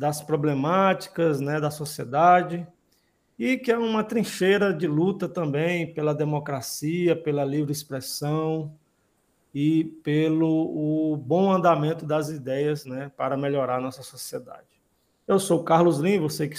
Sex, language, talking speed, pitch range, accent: male, Portuguese, 135 wpm, 145-185 Hz, Brazilian